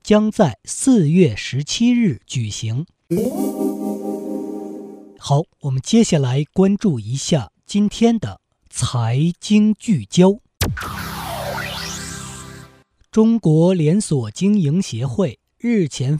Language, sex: Chinese, male